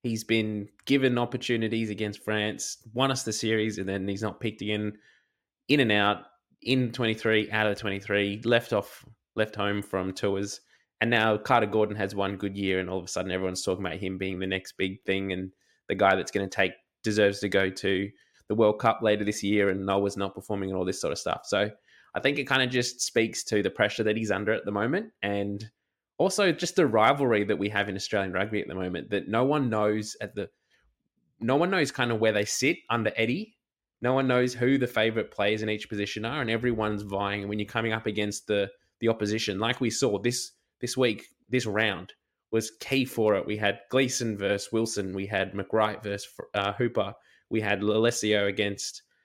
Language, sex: English, male